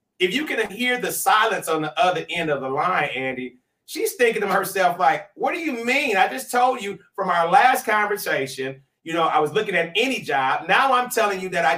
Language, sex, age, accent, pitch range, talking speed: English, male, 30-49, American, 185-250 Hz, 230 wpm